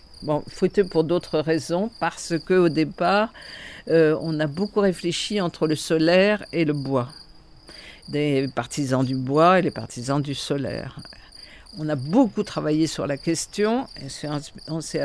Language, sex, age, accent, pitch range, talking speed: French, female, 50-69, French, 140-180 Hz, 150 wpm